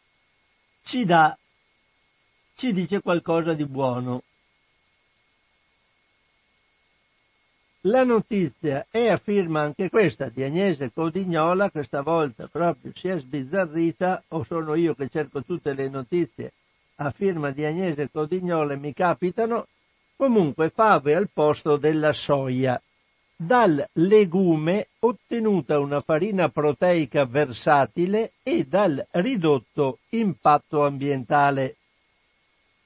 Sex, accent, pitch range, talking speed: male, native, 145-185 Hz, 105 wpm